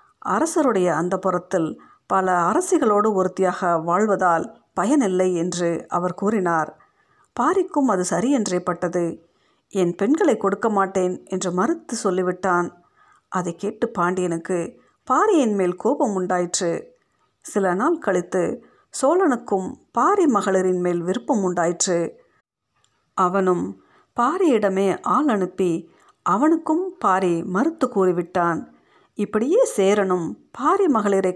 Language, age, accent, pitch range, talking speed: Tamil, 50-69, native, 180-260 Hz, 95 wpm